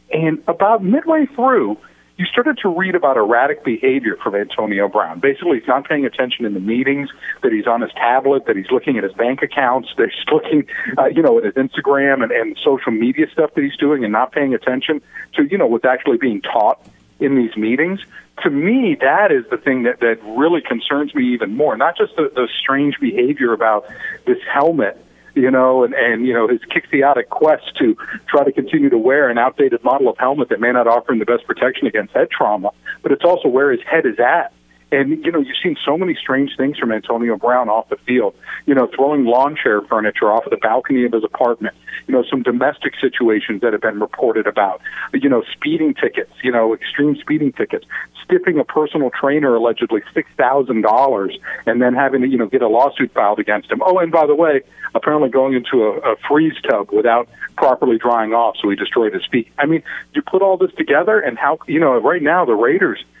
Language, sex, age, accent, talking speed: English, male, 50-69, American, 215 wpm